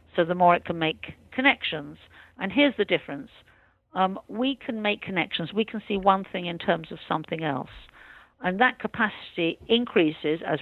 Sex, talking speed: female, 175 wpm